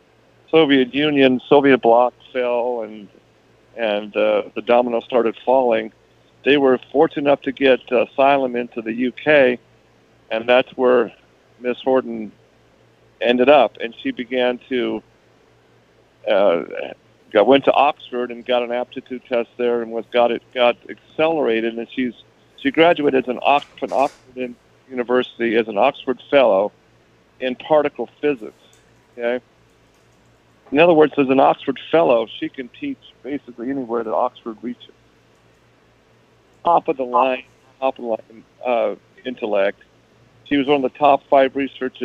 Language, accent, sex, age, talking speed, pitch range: English, American, male, 50-69, 145 wpm, 115-140 Hz